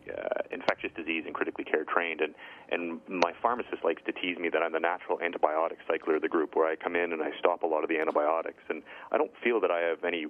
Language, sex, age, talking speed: English, male, 30-49, 255 wpm